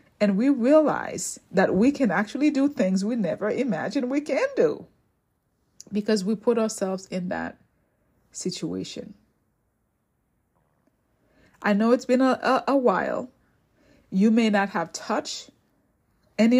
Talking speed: 130 wpm